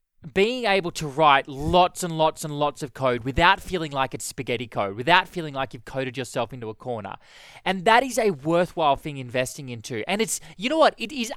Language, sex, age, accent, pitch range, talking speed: English, male, 20-39, Australian, 145-205 Hz, 215 wpm